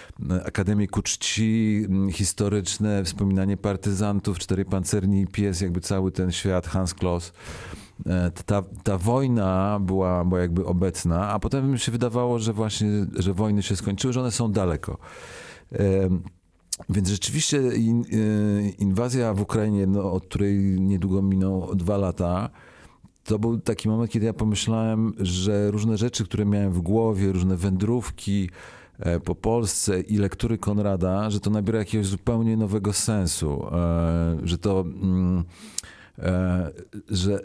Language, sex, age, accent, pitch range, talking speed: Polish, male, 40-59, native, 95-110 Hz, 125 wpm